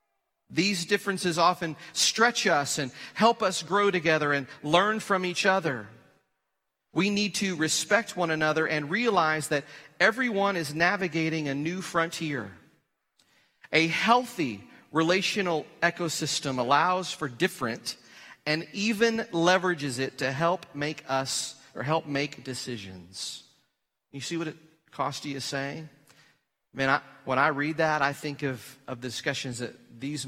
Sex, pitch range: male, 135-175 Hz